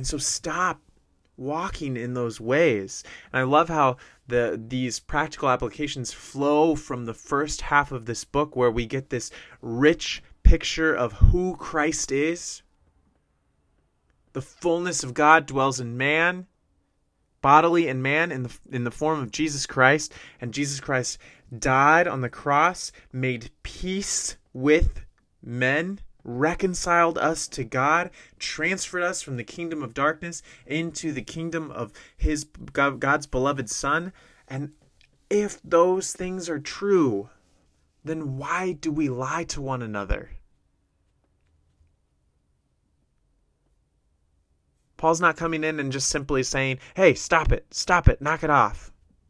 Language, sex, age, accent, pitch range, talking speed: English, male, 30-49, American, 115-155 Hz, 135 wpm